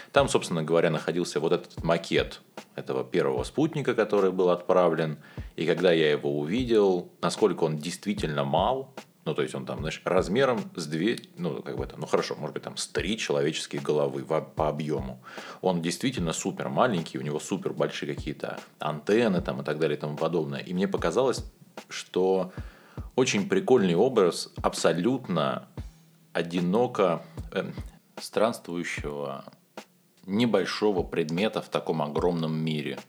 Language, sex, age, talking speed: Russian, male, 30-49, 145 wpm